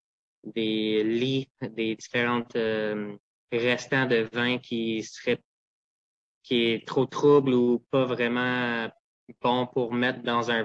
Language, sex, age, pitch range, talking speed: French, male, 20-39, 110-125 Hz, 125 wpm